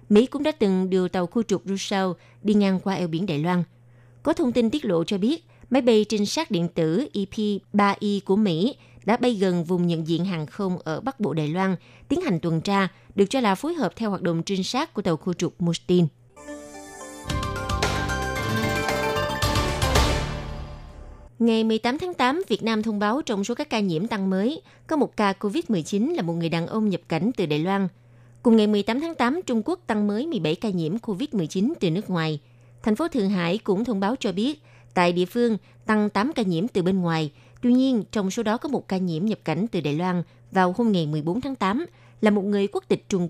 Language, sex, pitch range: Vietnamese, female, 165-225 Hz